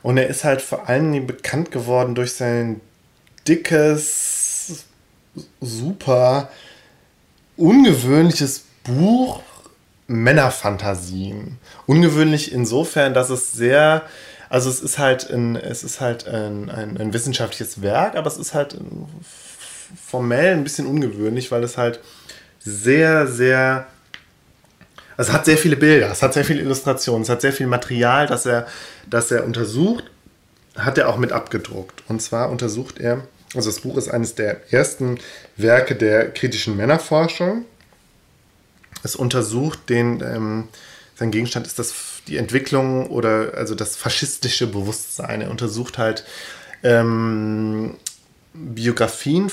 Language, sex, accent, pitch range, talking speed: German, male, German, 115-145 Hz, 125 wpm